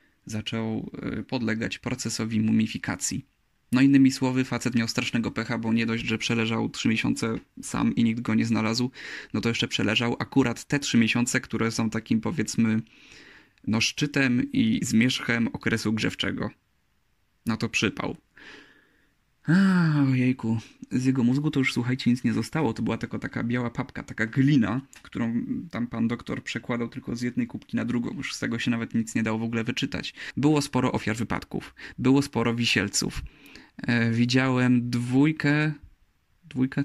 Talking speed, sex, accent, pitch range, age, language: 160 wpm, male, native, 115-130 Hz, 20-39, Polish